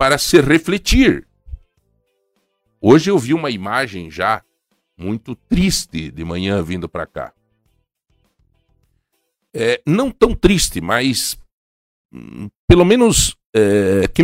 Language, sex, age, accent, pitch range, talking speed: Portuguese, male, 60-79, Brazilian, 85-145 Hz, 100 wpm